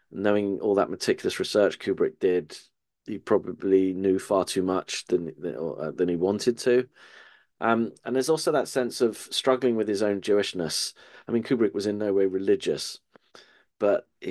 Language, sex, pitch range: English, male, 90-120 Hz